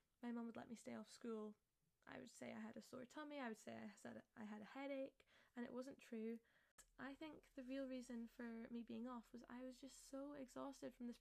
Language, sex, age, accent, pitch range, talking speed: English, female, 10-29, British, 225-260 Hz, 240 wpm